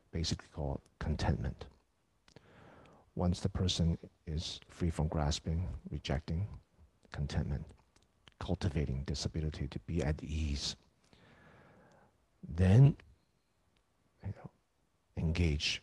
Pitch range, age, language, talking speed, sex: 75-95 Hz, 50-69, English, 80 wpm, male